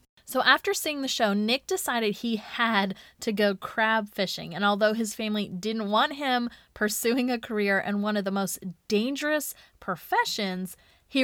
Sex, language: female, English